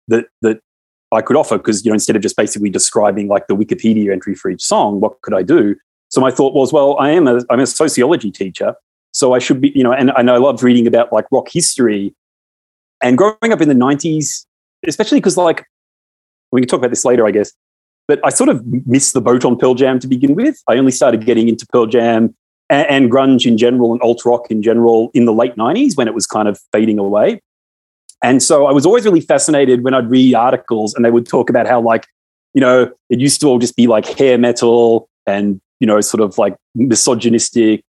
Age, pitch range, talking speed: 30-49, 110-130 Hz, 230 wpm